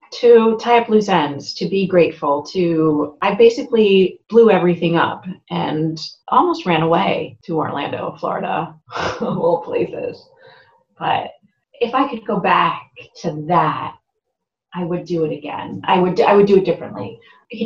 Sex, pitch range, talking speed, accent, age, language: female, 170-240 Hz, 150 wpm, American, 30-49, English